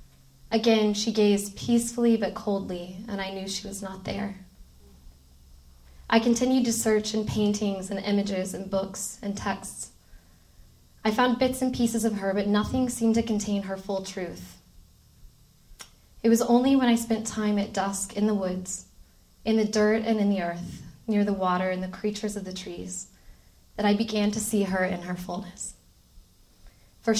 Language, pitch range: English, 185-215 Hz